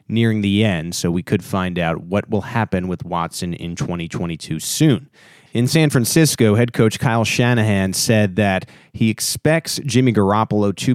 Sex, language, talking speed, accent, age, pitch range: male, English, 165 wpm, American, 30-49, 95-125 Hz